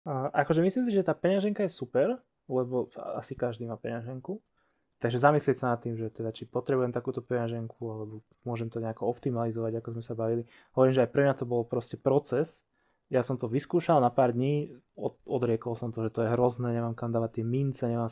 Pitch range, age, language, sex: 115-130 Hz, 20-39, Slovak, male